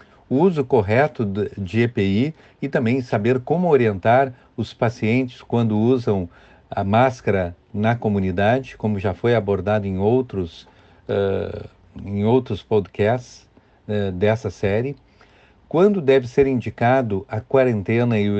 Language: Portuguese